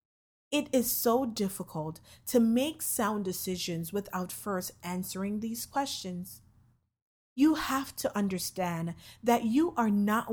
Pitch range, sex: 175-235 Hz, female